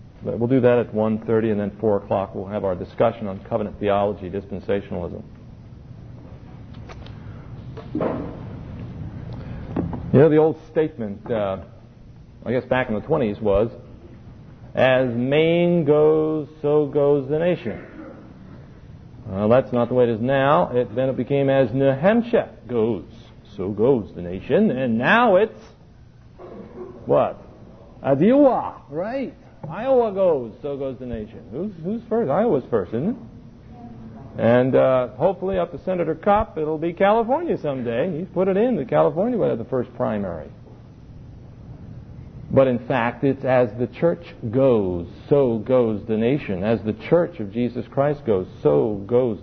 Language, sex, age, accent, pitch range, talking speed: English, male, 40-59, American, 110-150 Hz, 145 wpm